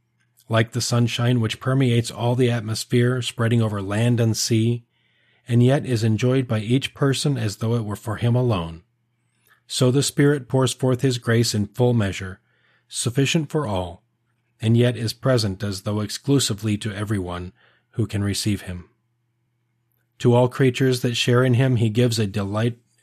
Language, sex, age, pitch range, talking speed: English, male, 40-59, 110-125 Hz, 165 wpm